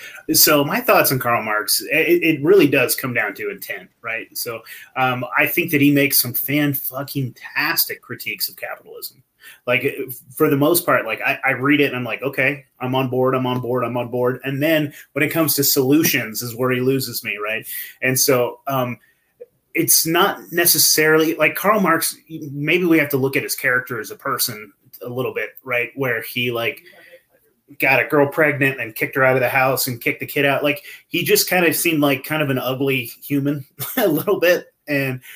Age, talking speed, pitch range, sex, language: 30-49, 205 wpm, 130-155 Hz, male, English